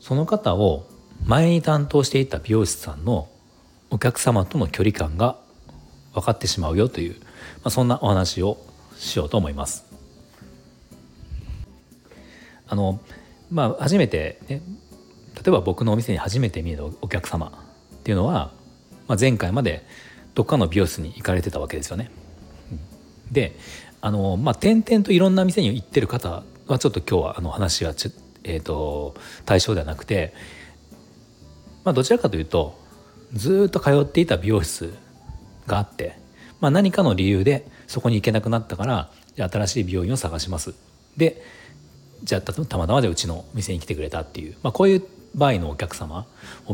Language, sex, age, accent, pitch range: Japanese, male, 40-59, native, 85-125 Hz